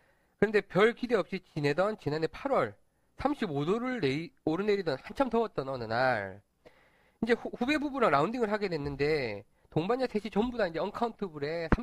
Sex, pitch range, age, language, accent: male, 140-220 Hz, 40-59, Korean, native